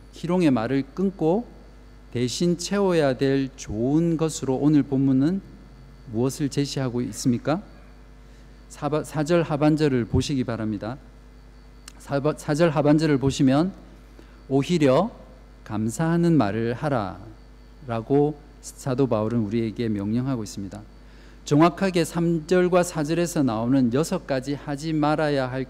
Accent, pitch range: native, 110-150 Hz